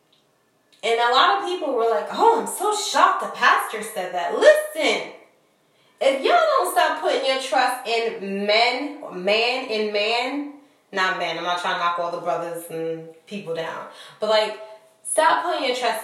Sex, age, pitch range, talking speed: female, 20-39, 205-275 Hz, 175 wpm